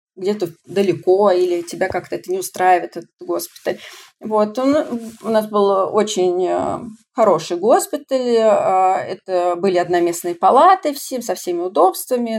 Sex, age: female, 30-49